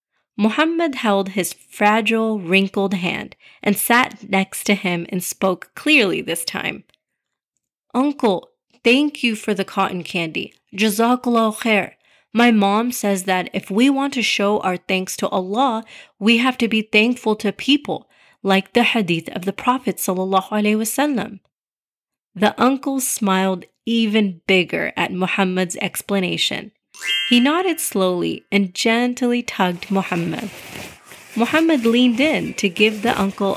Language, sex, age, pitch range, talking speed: English, female, 30-49, 190-245 Hz, 130 wpm